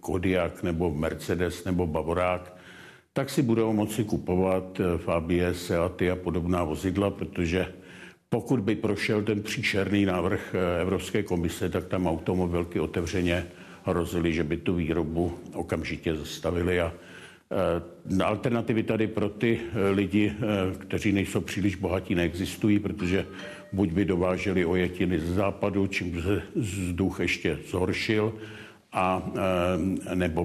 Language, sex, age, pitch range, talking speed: Czech, male, 60-79, 90-105 Hz, 120 wpm